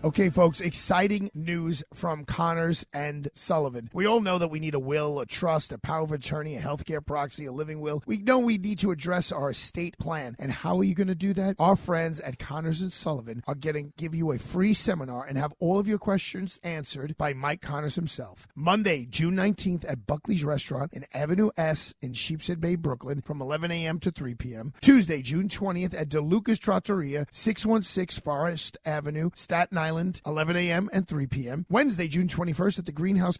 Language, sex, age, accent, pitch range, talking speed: English, male, 40-59, American, 150-190 Hz, 200 wpm